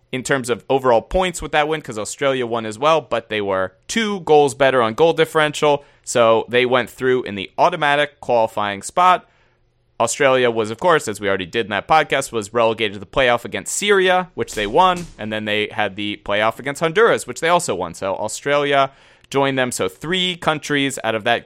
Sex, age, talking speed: male, 30-49, 205 wpm